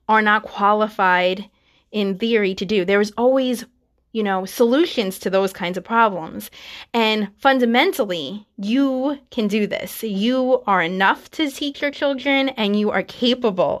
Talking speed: 150 wpm